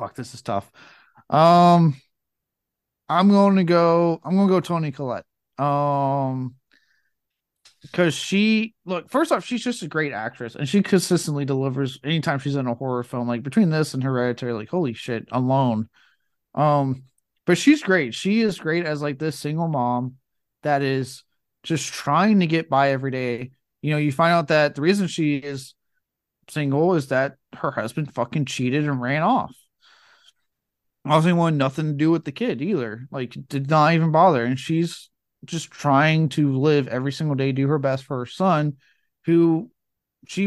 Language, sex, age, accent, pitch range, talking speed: English, male, 30-49, American, 130-165 Hz, 170 wpm